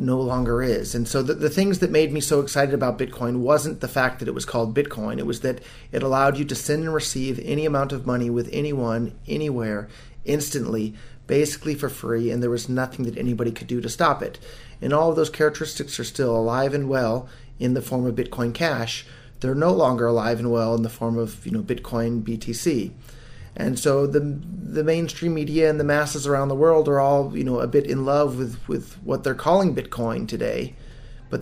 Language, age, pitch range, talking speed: English, 30-49, 120-140 Hz, 215 wpm